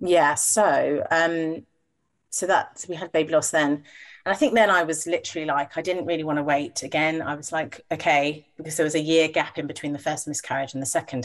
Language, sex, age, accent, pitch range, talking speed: English, female, 30-49, British, 145-170 Hz, 230 wpm